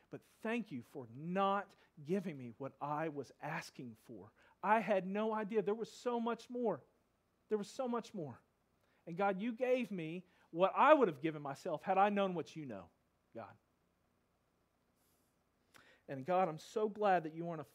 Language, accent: English, American